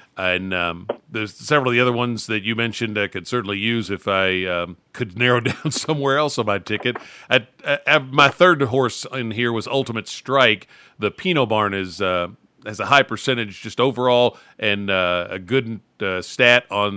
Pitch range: 100-125 Hz